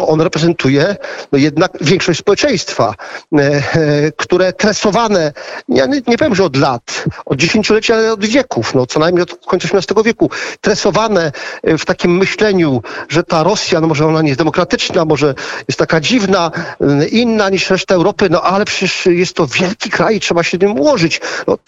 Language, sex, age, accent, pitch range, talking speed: Polish, male, 40-59, native, 150-195 Hz, 165 wpm